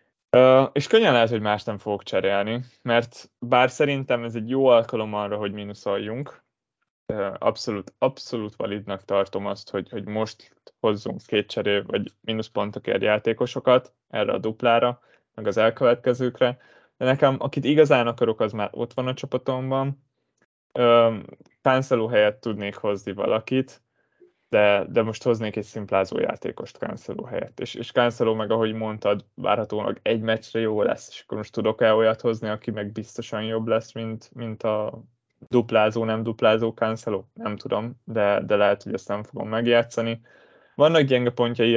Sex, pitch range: male, 110-125 Hz